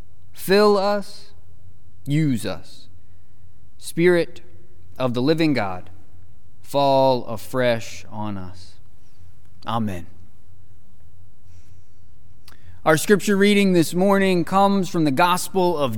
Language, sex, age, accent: English, male, 30-49, American